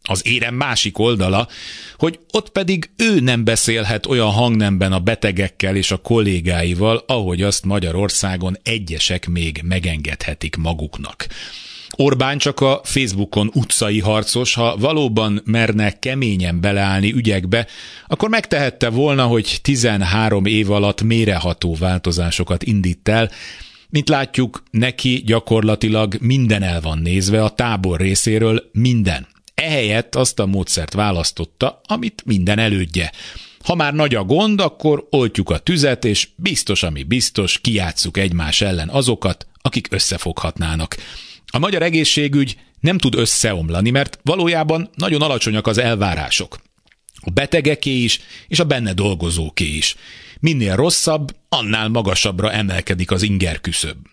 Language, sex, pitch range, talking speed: Hungarian, male, 90-125 Hz, 125 wpm